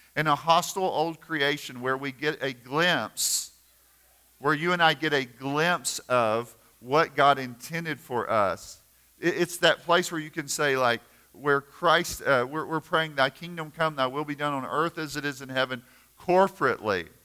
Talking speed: 180 wpm